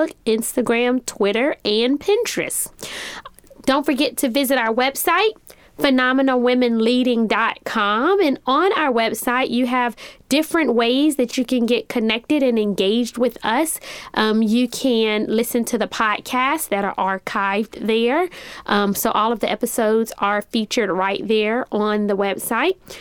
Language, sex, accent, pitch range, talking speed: English, female, American, 220-270 Hz, 135 wpm